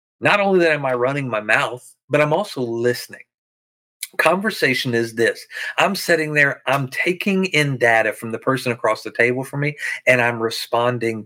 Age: 40-59